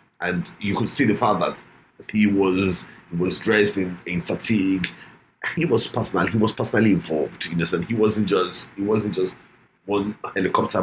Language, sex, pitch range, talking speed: English, male, 90-115 Hz, 170 wpm